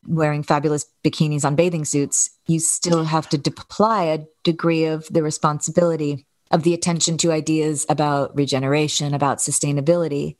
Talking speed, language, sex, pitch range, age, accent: 145 wpm, English, female, 140-160 Hz, 40-59, American